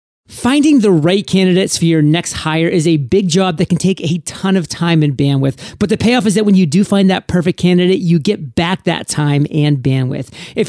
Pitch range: 155-190 Hz